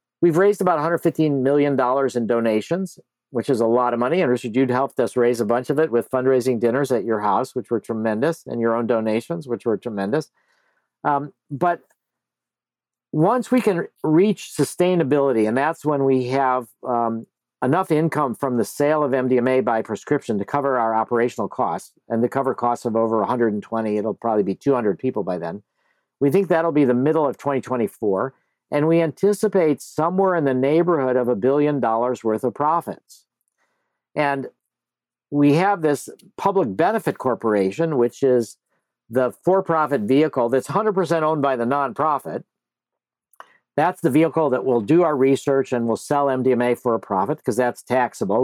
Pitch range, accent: 120-155 Hz, American